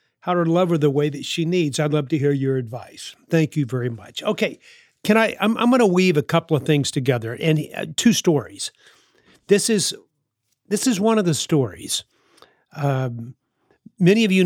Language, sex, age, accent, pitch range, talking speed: English, male, 50-69, American, 140-175 Hz, 195 wpm